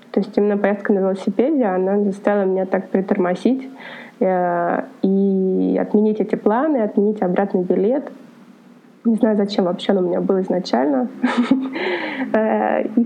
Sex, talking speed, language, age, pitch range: female, 135 wpm, Russian, 20-39, 205-245 Hz